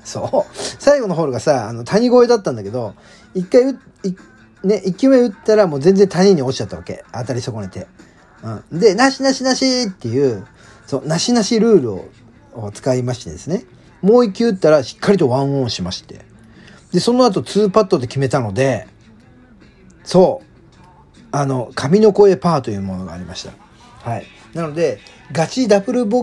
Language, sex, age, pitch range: Japanese, male, 40-59, 125-210 Hz